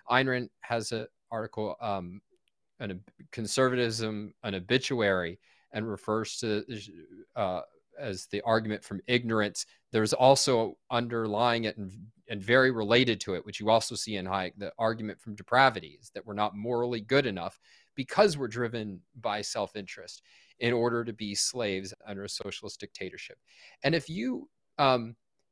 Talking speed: 160 wpm